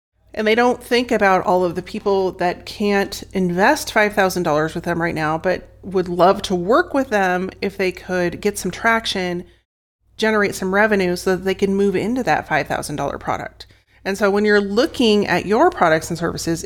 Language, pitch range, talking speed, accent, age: English, 175-210 Hz, 185 wpm, American, 30-49